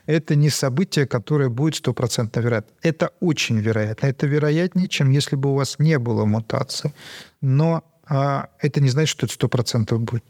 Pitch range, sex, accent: 125-150 Hz, male, native